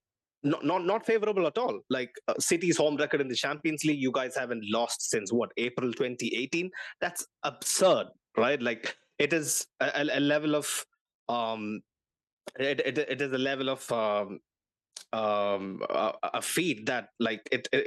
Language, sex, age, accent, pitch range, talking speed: English, male, 20-39, Indian, 115-165 Hz, 165 wpm